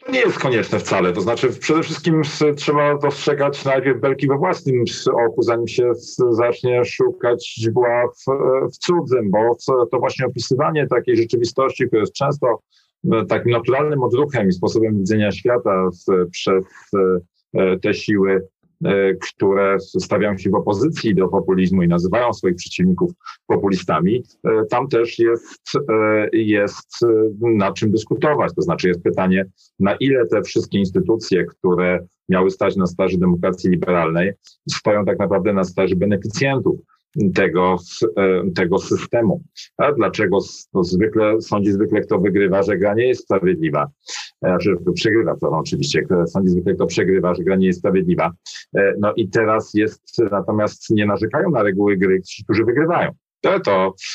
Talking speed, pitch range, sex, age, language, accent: 140 wpm, 95-135 Hz, male, 40-59, Polish, native